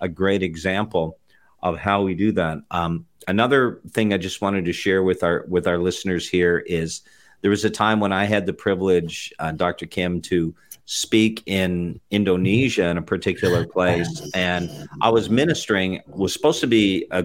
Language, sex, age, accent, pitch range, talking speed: English, male, 40-59, American, 90-105 Hz, 180 wpm